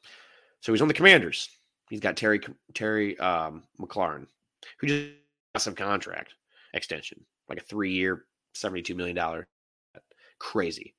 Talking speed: 130 wpm